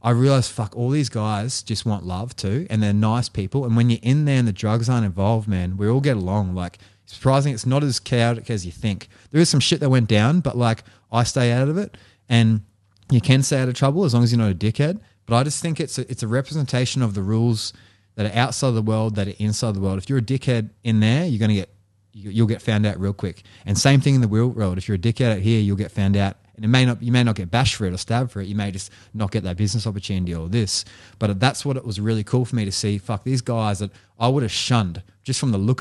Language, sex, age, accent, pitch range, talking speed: English, male, 20-39, Australian, 100-125 Hz, 285 wpm